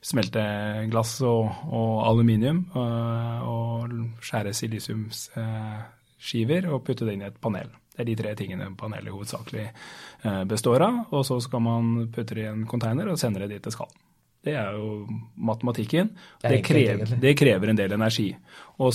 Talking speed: 160 wpm